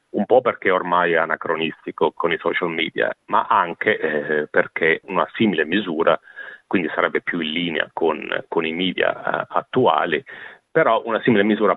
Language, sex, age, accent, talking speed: Italian, male, 40-59, native, 165 wpm